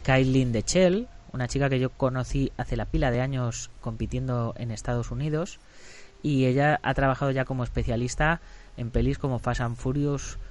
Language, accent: Spanish, Spanish